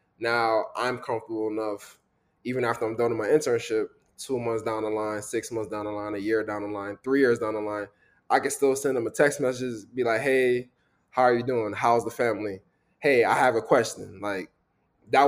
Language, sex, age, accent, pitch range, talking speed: English, male, 20-39, American, 115-170 Hz, 220 wpm